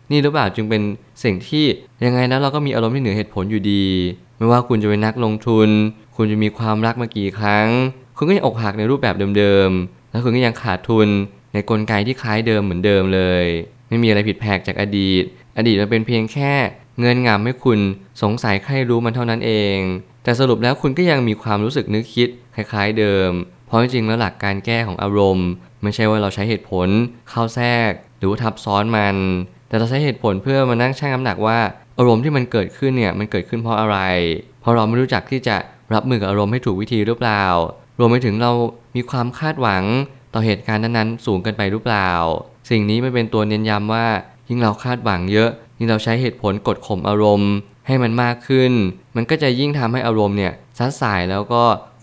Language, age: Thai, 20-39